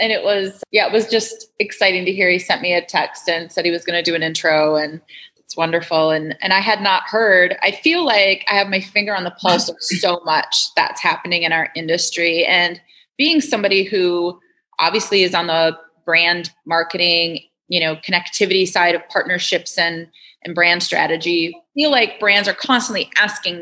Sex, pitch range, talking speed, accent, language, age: female, 165-195 Hz, 200 wpm, American, English, 30-49